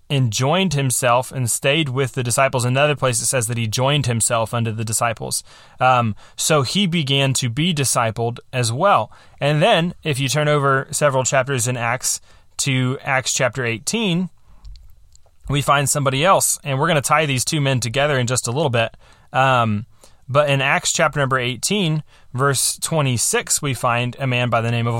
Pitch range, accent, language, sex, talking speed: 120-140 Hz, American, English, male, 185 wpm